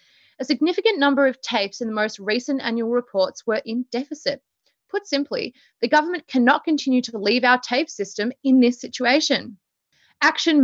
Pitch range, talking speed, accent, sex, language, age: 215-275 Hz, 165 wpm, Australian, female, English, 20-39